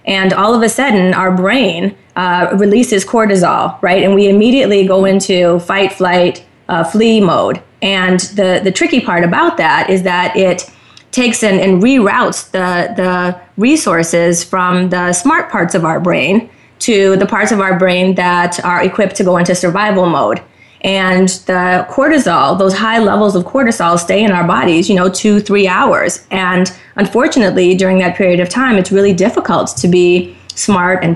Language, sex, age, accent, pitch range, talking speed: English, female, 20-39, American, 180-200 Hz, 175 wpm